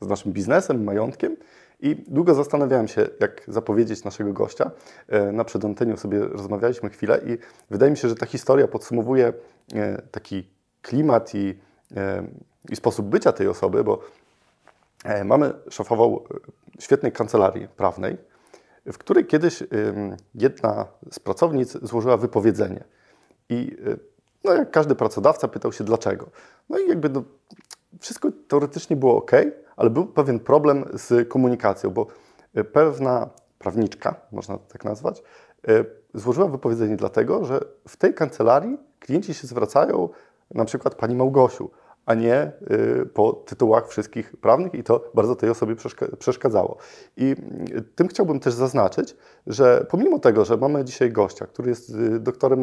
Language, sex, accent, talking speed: Polish, male, native, 130 wpm